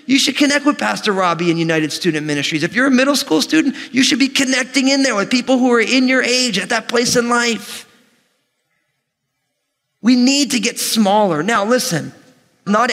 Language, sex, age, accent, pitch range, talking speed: English, male, 30-49, American, 180-255 Hz, 195 wpm